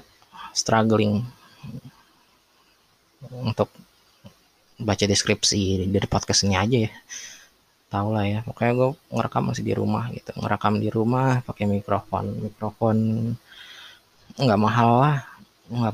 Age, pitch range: 20-39, 110-130 Hz